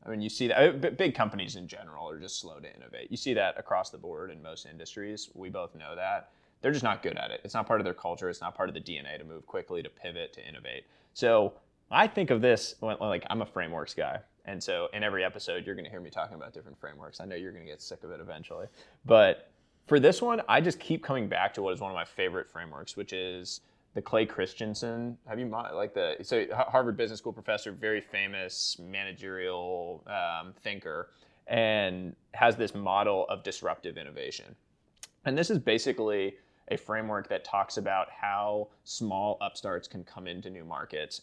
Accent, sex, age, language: American, male, 20-39, English